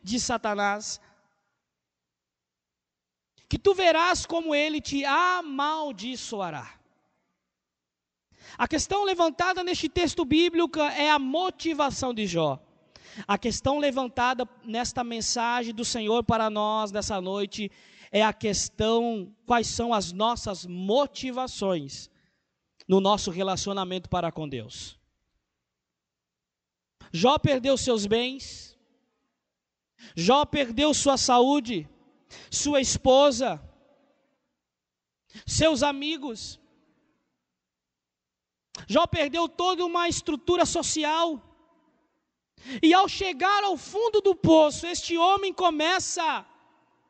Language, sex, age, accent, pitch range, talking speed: Portuguese, male, 20-39, Brazilian, 195-330 Hz, 95 wpm